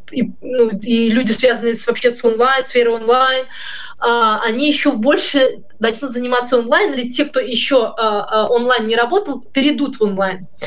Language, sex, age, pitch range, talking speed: Russian, female, 20-39, 215-260 Hz, 145 wpm